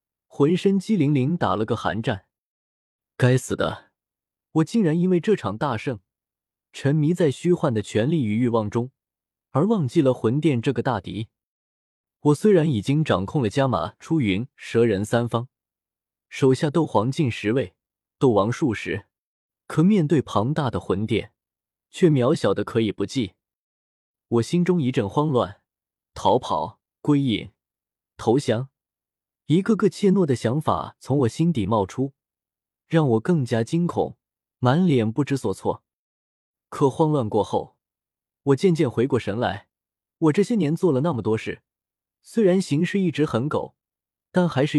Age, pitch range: 20-39, 110-160 Hz